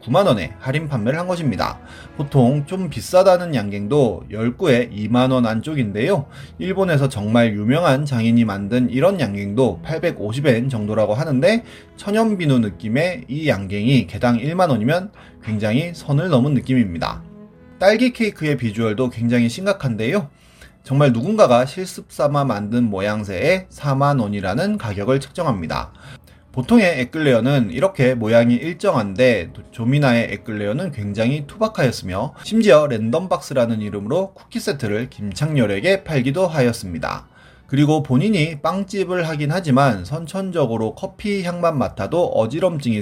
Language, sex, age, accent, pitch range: Korean, male, 30-49, native, 115-165 Hz